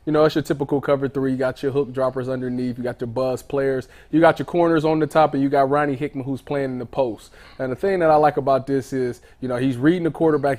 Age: 20-39